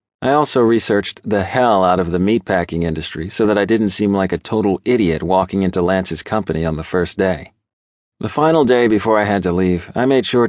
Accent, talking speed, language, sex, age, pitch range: American, 215 wpm, English, male, 40-59, 95-120 Hz